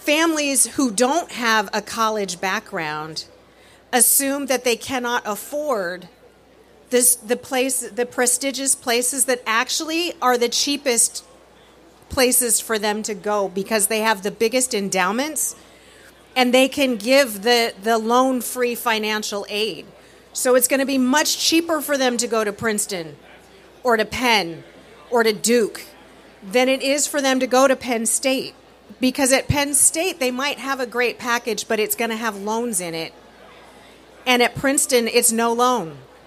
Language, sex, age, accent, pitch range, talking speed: English, female, 40-59, American, 210-260 Hz, 155 wpm